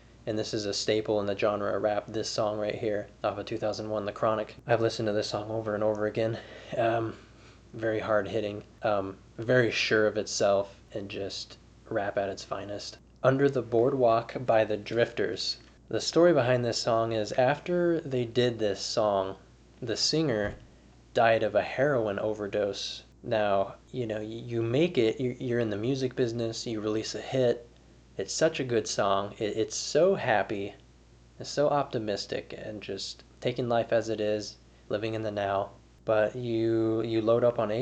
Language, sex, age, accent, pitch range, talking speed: English, male, 20-39, American, 105-120 Hz, 170 wpm